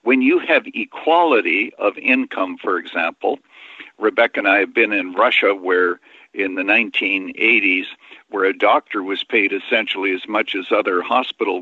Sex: male